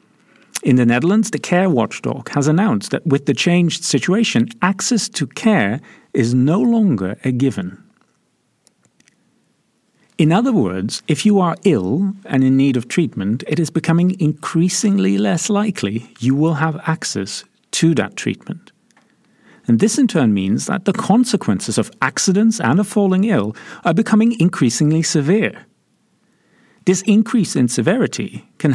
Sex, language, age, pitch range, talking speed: male, English, 50-69, 125-205 Hz, 145 wpm